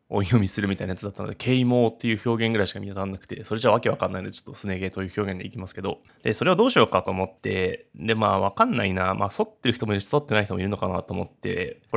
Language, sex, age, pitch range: Japanese, male, 20-39, 95-120 Hz